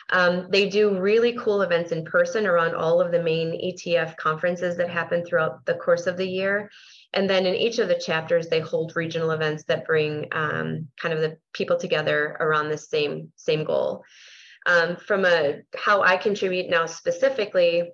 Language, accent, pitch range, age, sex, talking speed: English, American, 165-205 Hz, 30-49, female, 185 wpm